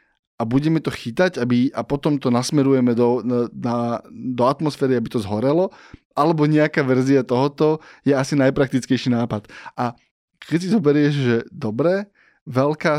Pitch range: 125-150 Hz